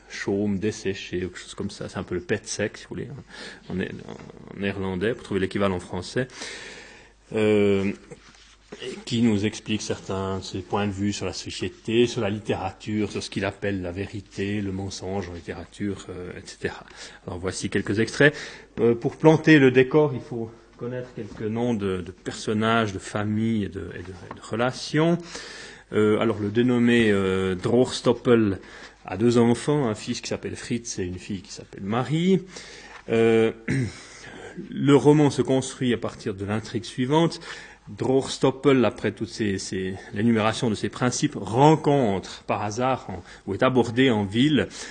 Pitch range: 100-125 Hz